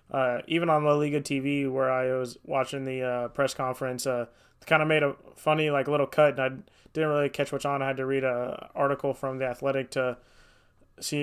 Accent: American